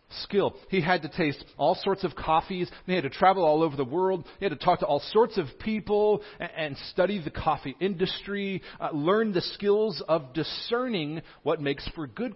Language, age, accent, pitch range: English, 40-59, American, 130-200 Hz